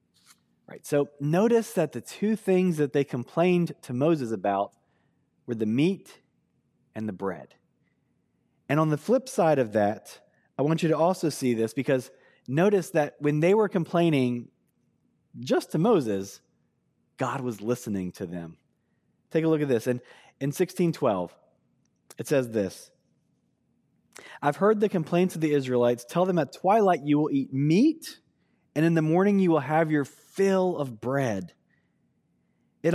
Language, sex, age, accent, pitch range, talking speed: English, male, 30-49, American, 125-180 Hz, 155 wpm